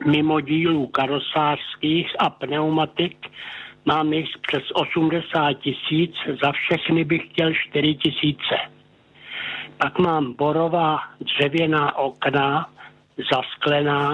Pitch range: 140-160 Hz